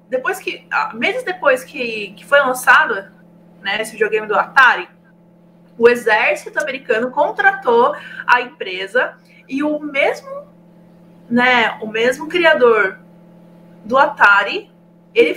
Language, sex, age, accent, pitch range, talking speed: Portuguese, female, 20-39, Brazilian, 195-280 Hz, 115 wpm